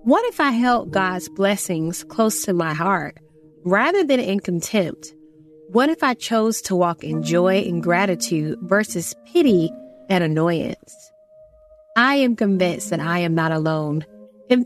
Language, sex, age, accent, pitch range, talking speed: English, female, 30-49, American, 170-255 Hz, 150 wpm